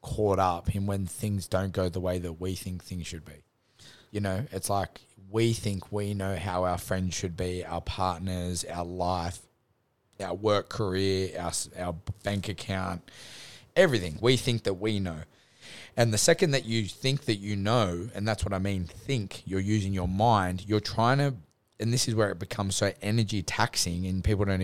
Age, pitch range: 20-39, 95-115 Hz